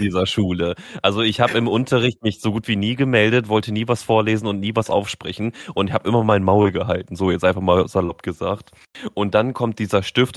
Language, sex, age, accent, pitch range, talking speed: German, male, 30-49, German, 105-125 Hz, 220 wpm